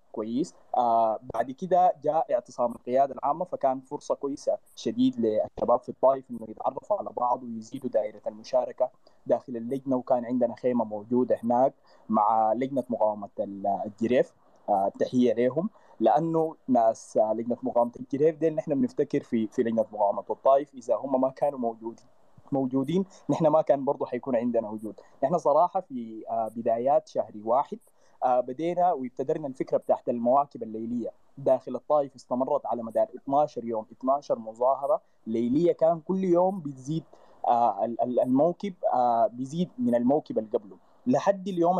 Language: Arabic